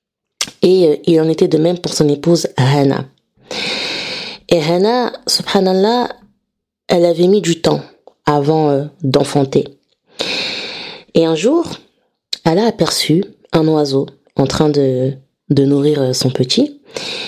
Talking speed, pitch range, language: 120 wpm, 145-185 Hz, French